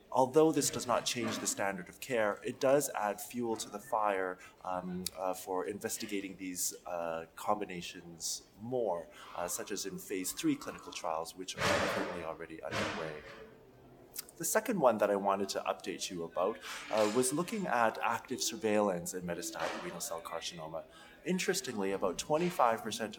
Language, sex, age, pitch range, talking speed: English, male, 20-39, 95-135 Hz, 160 wpm